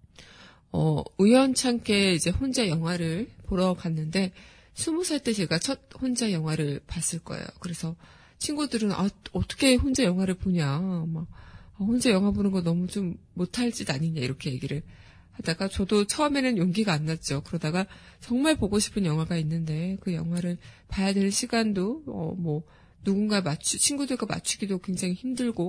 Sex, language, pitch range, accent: female, Korean, 165-210 Hz, native